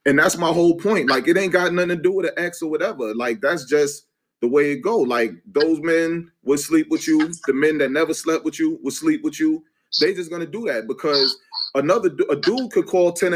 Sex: male